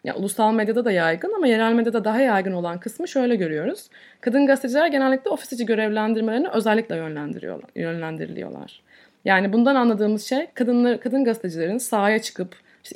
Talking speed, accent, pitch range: 145 wpm, native, 195-270 Hz